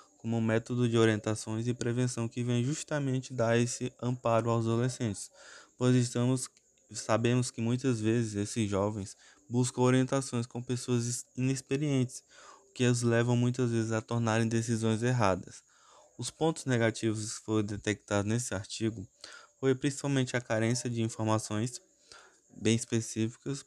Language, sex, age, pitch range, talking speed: Portuguese, male, 20-39, 110-125 Hz, 135 wpm